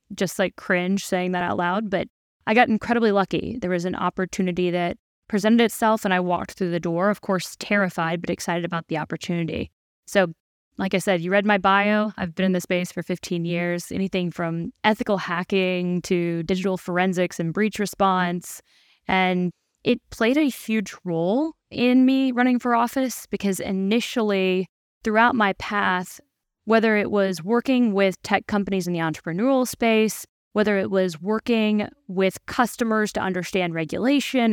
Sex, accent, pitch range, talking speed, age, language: female, American, 180-220 Hz, 165 wpm, 10-29, English